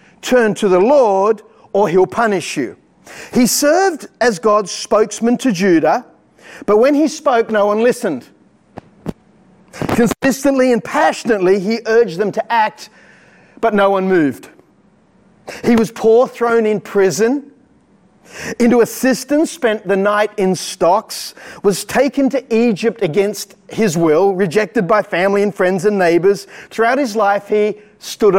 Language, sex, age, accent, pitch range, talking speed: English, male, 40-59, Australian, 195-240 Hz, 140 wpm